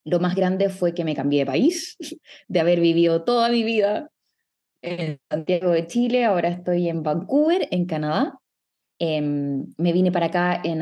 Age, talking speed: 20-39, 170 wpm